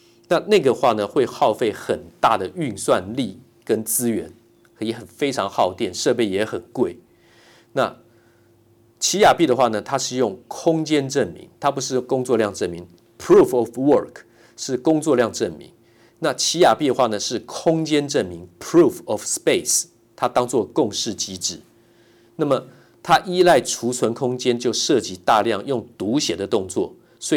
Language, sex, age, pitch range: Chinese, male, 50-69, 115-150 Hz